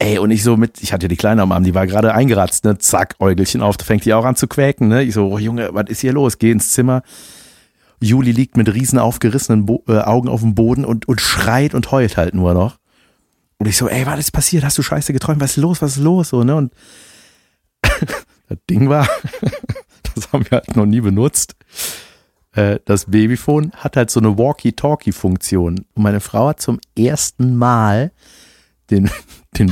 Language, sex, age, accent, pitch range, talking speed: German, male, 50-69, German, 110-145 Hz, 210 wpm